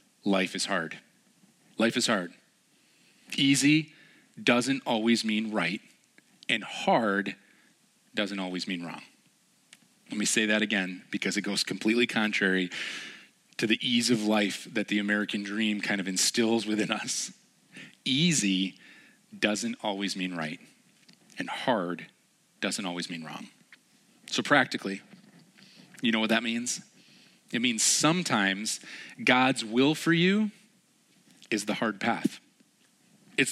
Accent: American